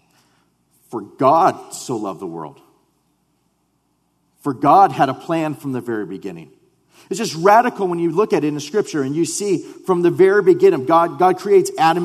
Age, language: 40-59, English